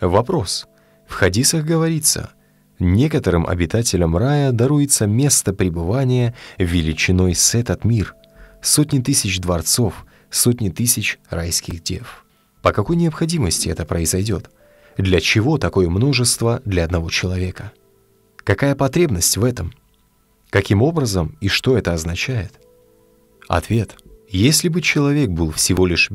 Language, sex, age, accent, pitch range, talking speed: Russian, male, 30-49, native, 85-125 Hz, 115 wpm